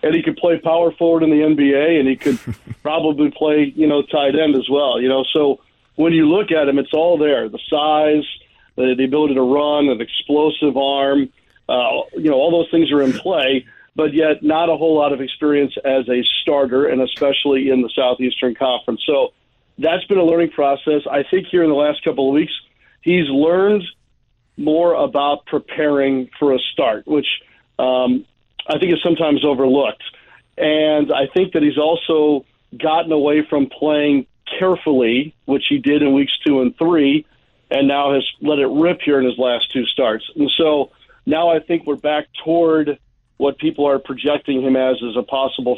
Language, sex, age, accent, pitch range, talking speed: English, male, 50-69, American, 135-155 Hz, 190 wpm